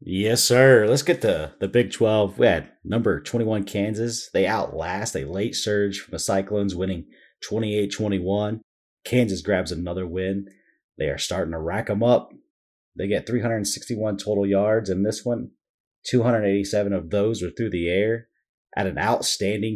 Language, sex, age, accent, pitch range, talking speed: English, male, 30-49, American, 95-115 Hz, 160 wpm